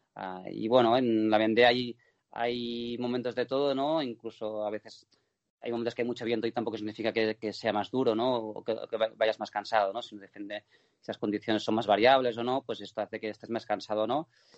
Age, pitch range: 20-39, 105-120 Hz